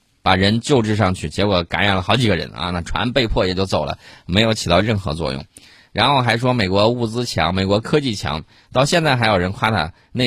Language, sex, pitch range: Chinese, male, 100-130 Hz